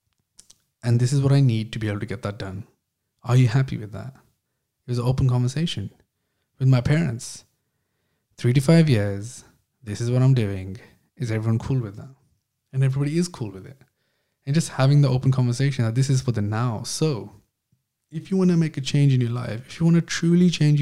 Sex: male